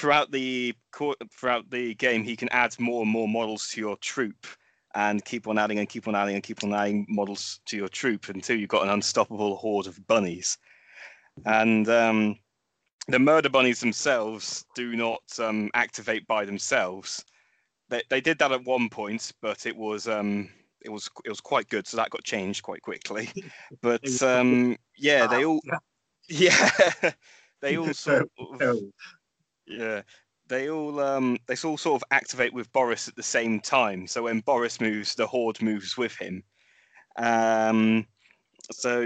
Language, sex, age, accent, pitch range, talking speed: English, male, 30-49, British, 110-130 Hz, 170 wpm